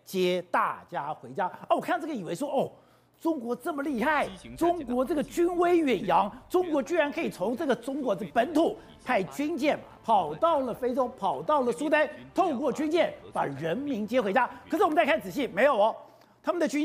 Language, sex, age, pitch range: Chinese, male, 50-69, 235-315 Hz